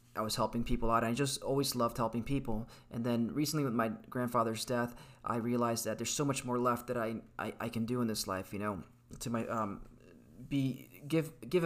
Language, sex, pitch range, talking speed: English, male, 110-125 Hz, 220 wpm